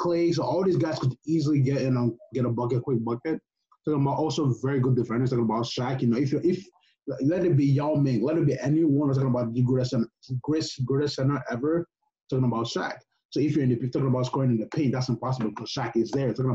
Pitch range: 115-140 Hz